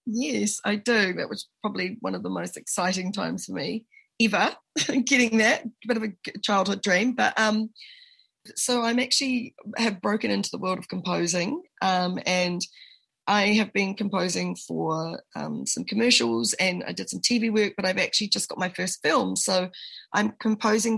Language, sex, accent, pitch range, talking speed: English, female, Australian, 180-230 Hz, 175 wpm